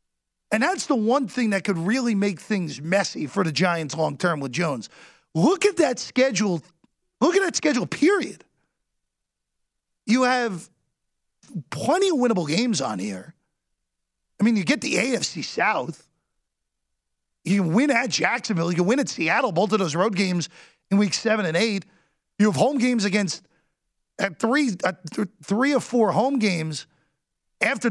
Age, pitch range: 40-59, 165-235 Hz